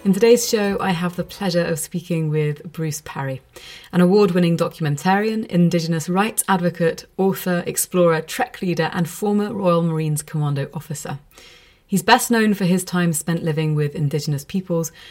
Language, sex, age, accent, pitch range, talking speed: English, female, 30-49, British, 160-190 Hz, 155 wpm